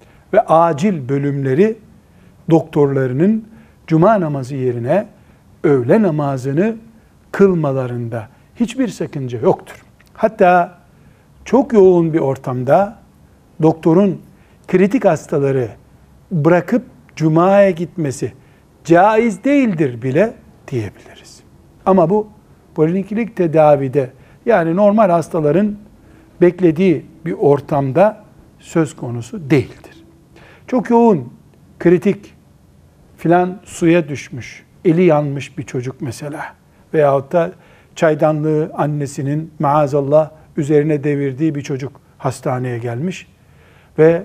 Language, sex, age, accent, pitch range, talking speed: Turkish, male, 60-79, native, 135-180 Hz, 85 wpm